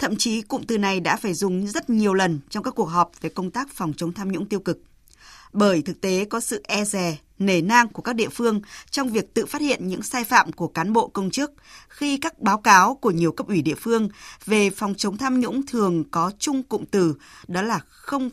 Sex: female